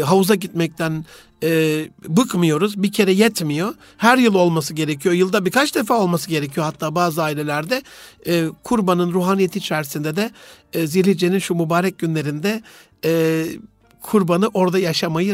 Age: 60-79